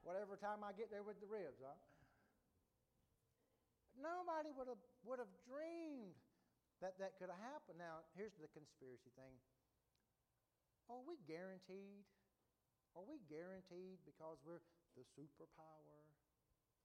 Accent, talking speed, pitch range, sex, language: American, 125 wpm, 140-170 Hz, male, English